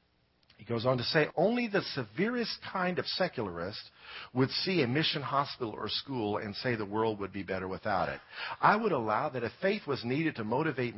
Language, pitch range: English, 120-190 Hz